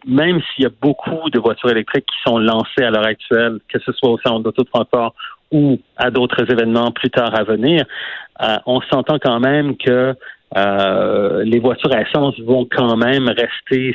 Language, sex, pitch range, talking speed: French, male, 115-135 Hz, 195 wpm